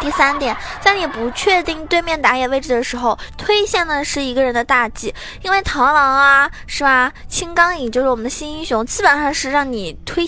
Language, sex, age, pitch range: Chinese, female, 20-39, 240-320 Hz